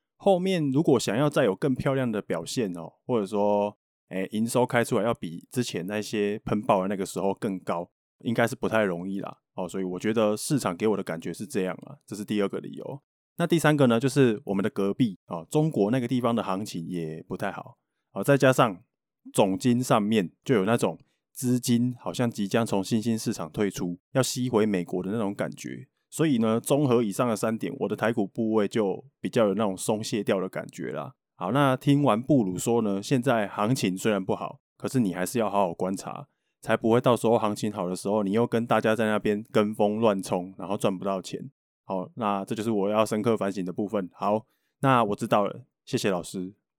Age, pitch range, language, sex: 20-39, 95-120 Hz, Chinese, male